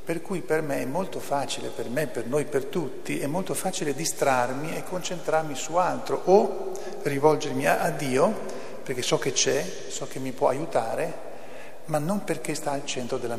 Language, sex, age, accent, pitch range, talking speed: Italian, male, 50-69, native, 130-170 Hz, 190 wpm